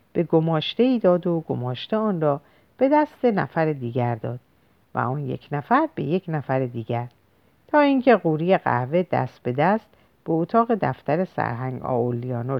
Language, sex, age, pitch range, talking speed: Persian, female, 50-69, 125-185 Hz, 155 wpm